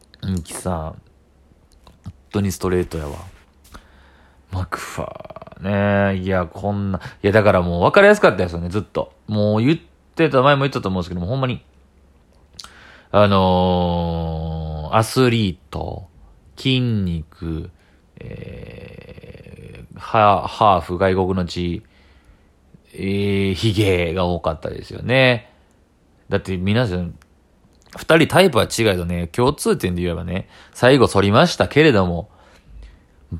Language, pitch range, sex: Japanese, 85-110 Hz, male